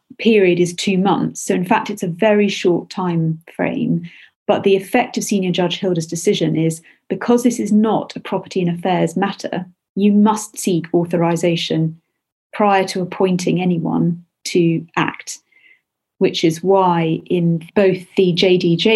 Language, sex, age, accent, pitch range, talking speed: English, female, 40-59, British, 170-215 Hz, 150 wpm